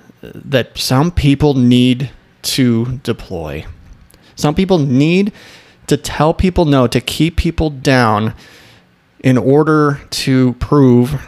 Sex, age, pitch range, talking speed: male, 30-49, 115-145 Hz, 110 wpm